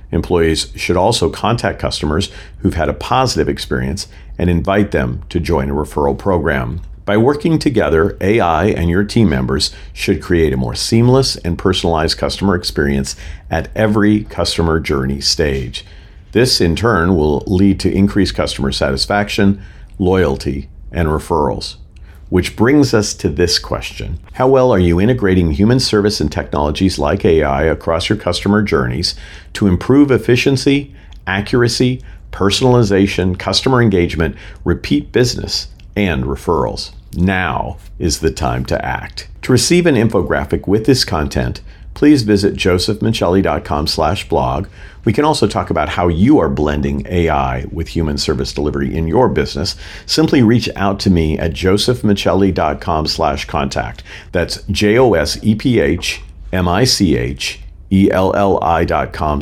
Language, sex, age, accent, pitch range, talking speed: English, male, 50-69, American, 75-105 Hz, 130 wpm